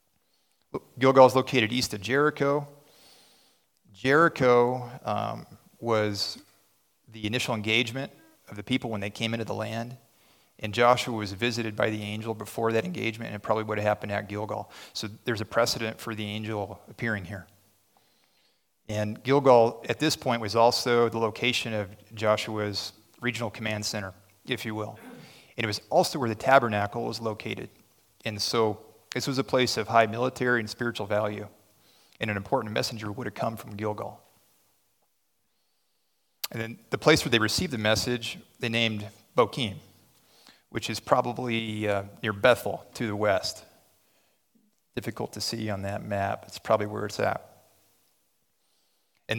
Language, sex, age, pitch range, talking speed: English, male, 30-49, 105-120 Hz, 155 wpm